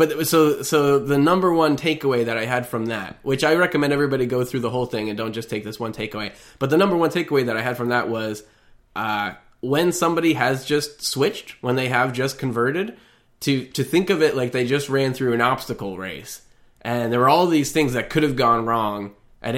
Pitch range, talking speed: 115-145 Hz, 230 wpm